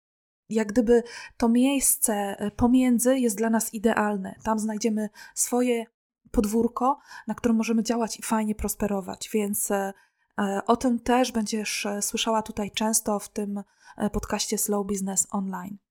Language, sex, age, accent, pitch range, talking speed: Polish, female, 20-39, native, 205-235 Hz, 130 wpm